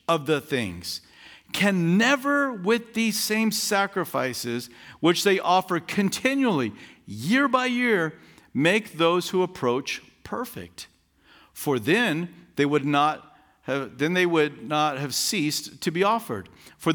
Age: 50-69